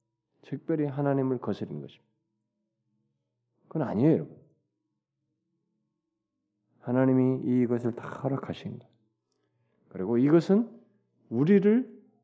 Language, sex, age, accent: Korean, male, 40-59, native